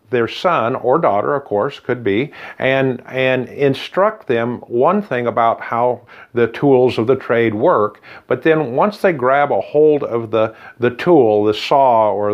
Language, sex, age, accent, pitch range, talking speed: English, male, 50-69, American, 115-150 Hz, 175 wpm